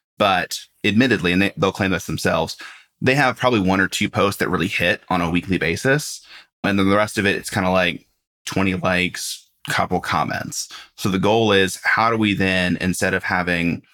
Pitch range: 90-105 Hz